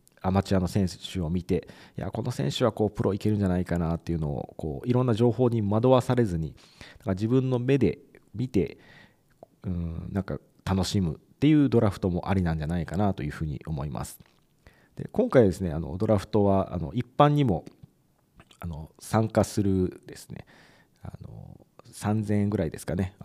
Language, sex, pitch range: Japanese, male, 85-110 Hz